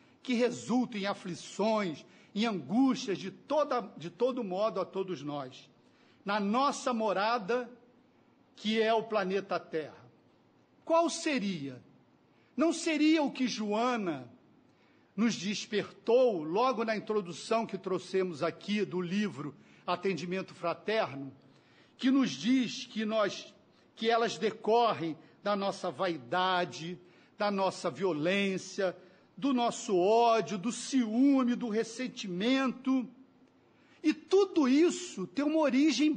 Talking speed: 110 wpm